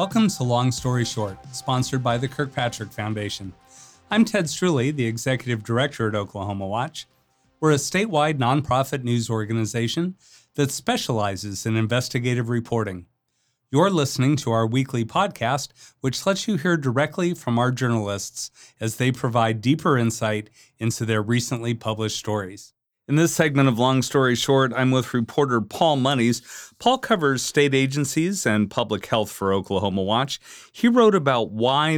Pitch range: 110-145 Hz